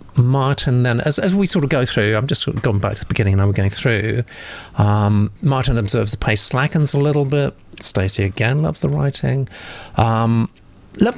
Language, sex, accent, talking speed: English, male, British, 205 wpm